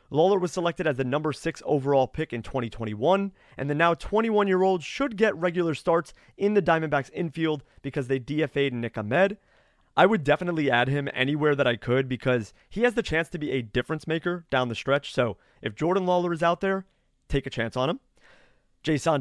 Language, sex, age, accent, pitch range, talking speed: English, male, 30-49, American, 130-185 Hz, 195 wpm